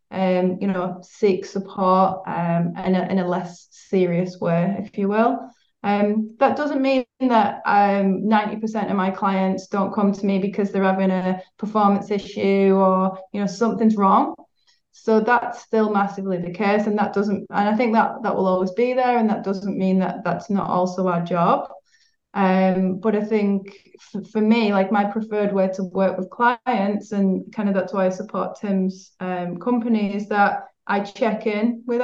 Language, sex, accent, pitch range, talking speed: English, female, British, 190-220 Hz, 185 wpm